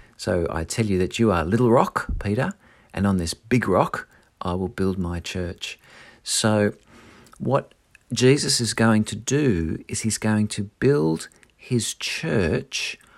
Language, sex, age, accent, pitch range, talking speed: English, male, 50-69, Australian, 95-120 Hz, 160 wpm